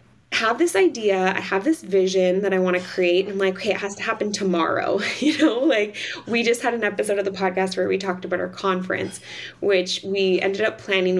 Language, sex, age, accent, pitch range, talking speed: English, female, 20-39, American, 180-205 Hz, 230 wpm